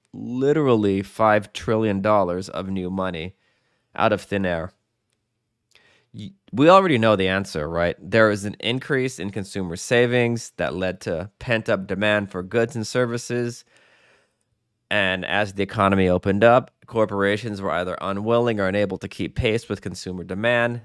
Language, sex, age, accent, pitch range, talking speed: English, male, 20-39, American, 95-120 Hz, 145 wpm